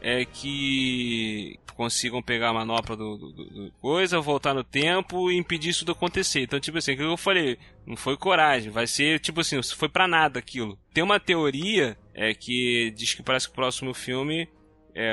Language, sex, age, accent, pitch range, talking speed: Portuguese, male, 20-39, Brazilian, 120-160 Hz, 195 wpm